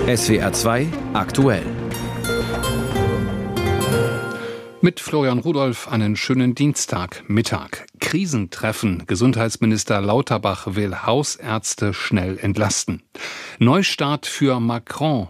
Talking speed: 75 wpm